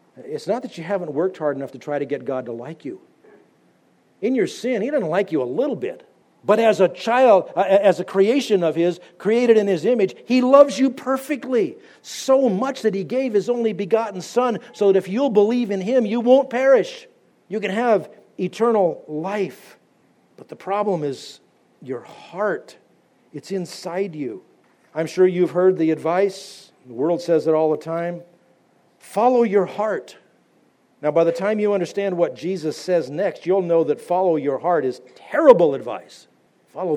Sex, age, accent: male, 50-69, American